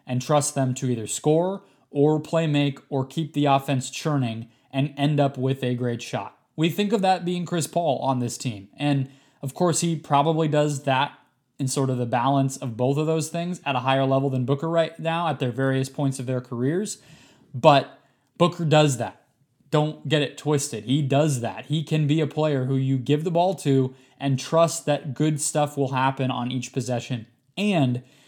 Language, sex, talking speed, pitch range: English, male, 205 wpm, 125-145 Hz